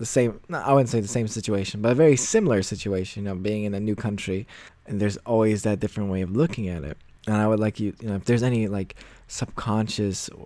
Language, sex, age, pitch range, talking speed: English, male, 20-39, 100-115 Hz, 250 wpm